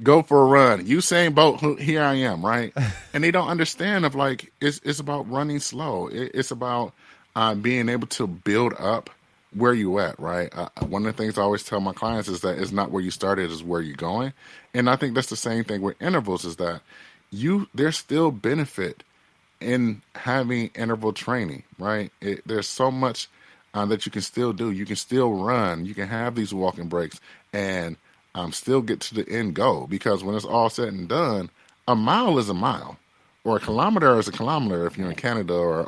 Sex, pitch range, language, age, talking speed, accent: male, 100-130 Hz, English, 30-49, 210 wpm, American